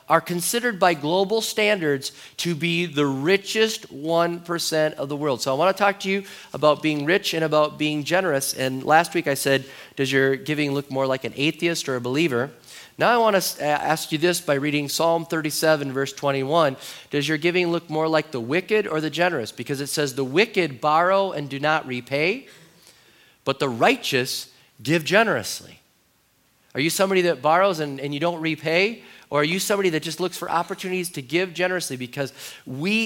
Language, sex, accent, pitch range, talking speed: English, male, American, 140-180 Hz, 190 wpm